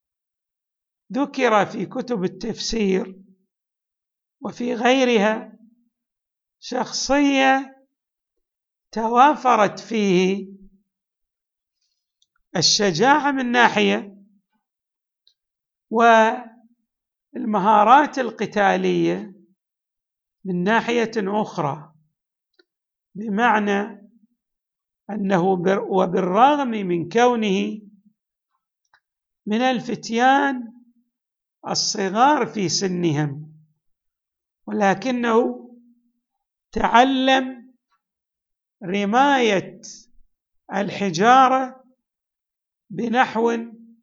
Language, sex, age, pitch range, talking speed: Arabic, male, 60-79, 195-245 Hz, 45 wpm